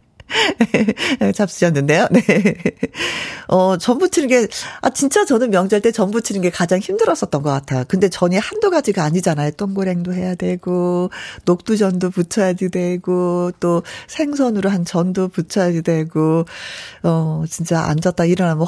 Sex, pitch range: female, 175-235 Hz